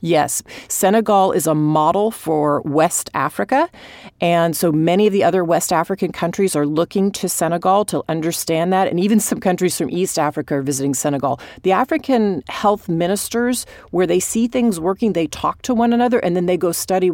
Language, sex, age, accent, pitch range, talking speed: English, female, 40-59, American, 170-235 Hz, 185 wpm